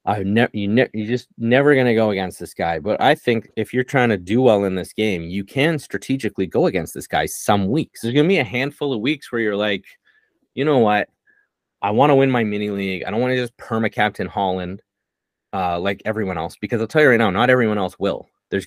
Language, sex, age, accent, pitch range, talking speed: English, male, 30-49, American, 100-135 Hz, 250 wpm